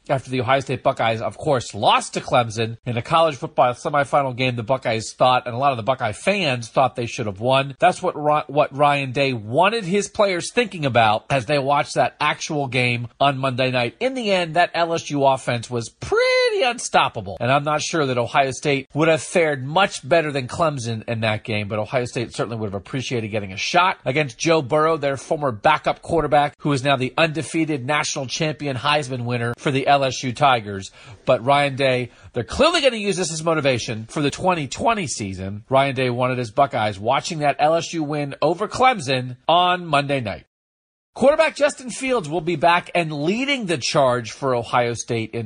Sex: male